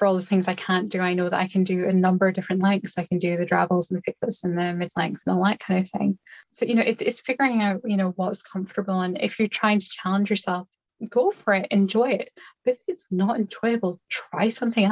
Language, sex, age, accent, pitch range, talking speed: English, female, 10-29, British, 170-195 Hz, 265 wpm